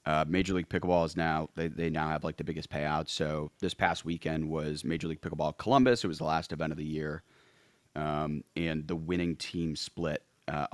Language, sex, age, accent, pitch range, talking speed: English, male, 30-49, American, 80-95 Hz, 210 wpm